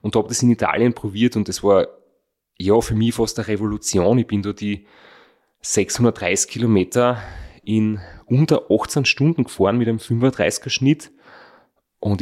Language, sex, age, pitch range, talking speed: German, male, 30-49, 105-125 Hz, 150 wpm